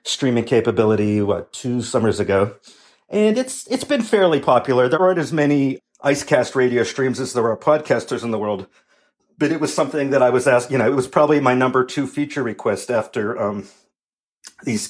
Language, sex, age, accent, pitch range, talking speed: English, male, 50-69, American, 120-150 Hz, 190 wpm